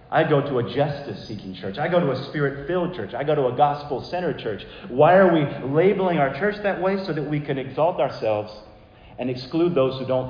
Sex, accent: male, American